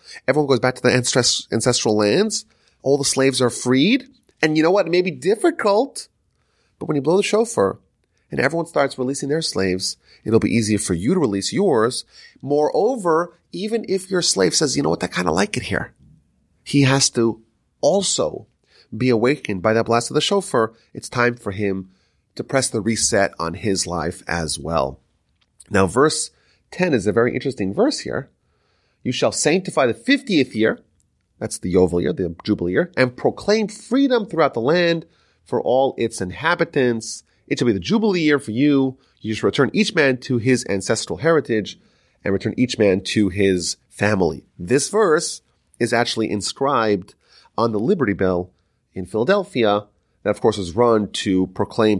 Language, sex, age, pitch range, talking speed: English, male, 30-49, 100-155 Hz, 180 wpm